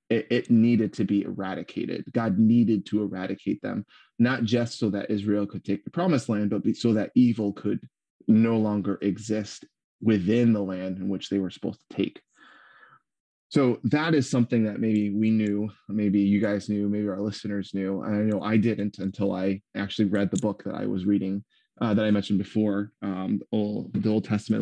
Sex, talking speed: male, 190 wpm